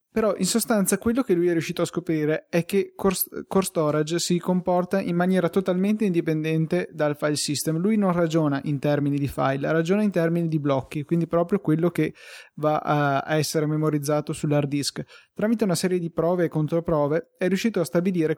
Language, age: Italian, 20-39